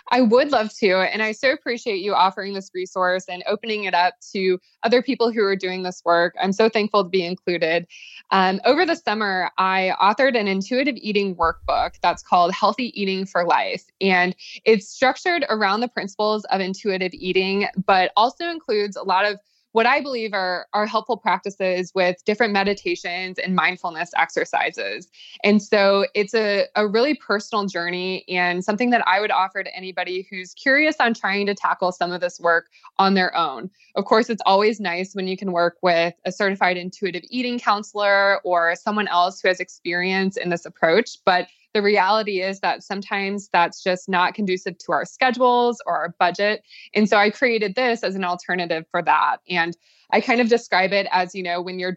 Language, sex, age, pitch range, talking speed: English, female, 20-39, 180-215 Hz, 190 wpm